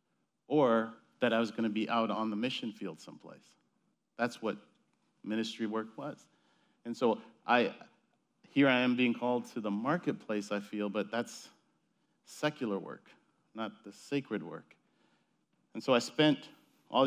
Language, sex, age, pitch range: English, male, 40-59, 105-140 Hz